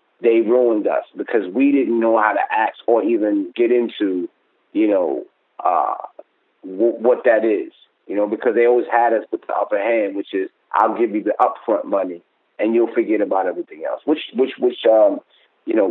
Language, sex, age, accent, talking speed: English, male, 30-49, American, 195 wpm